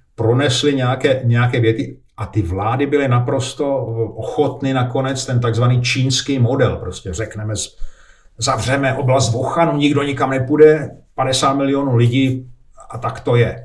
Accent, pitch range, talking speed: native, 110-135 Hz, 130 wpm